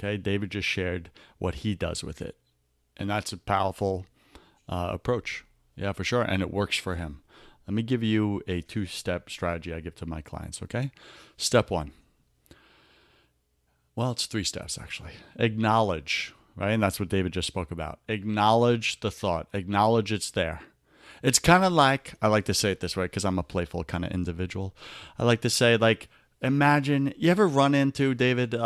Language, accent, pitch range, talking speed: English, American, 95-125 Hz, 180 wpm